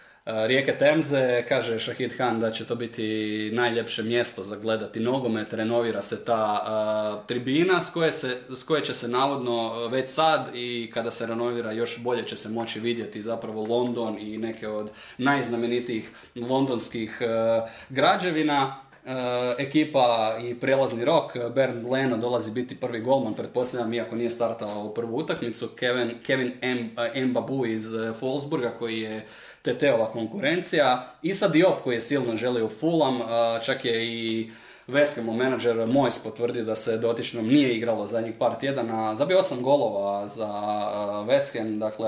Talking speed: 155 wpm